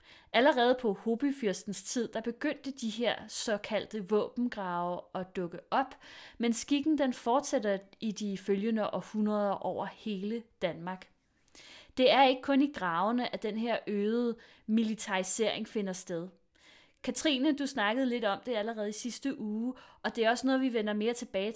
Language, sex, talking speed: Danish, female, 155 wpm